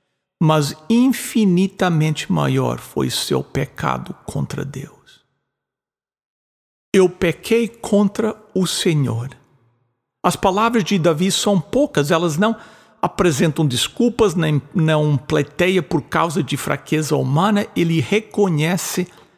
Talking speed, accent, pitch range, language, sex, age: 100 wpm, Brazilian, 145-200 Hz, English, male, 60-79